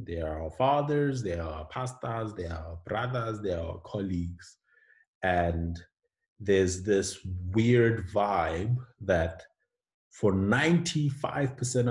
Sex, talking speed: male, 120 wpm